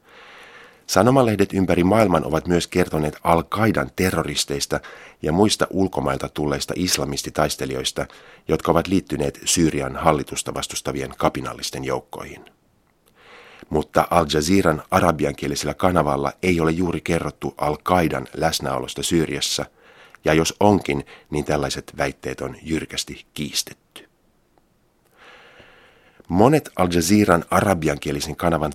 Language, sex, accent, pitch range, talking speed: Finnish, male, native, 70-85 Hz, 95 wpm